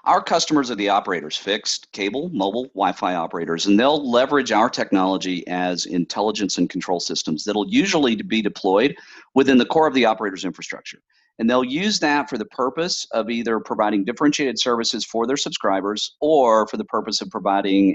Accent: American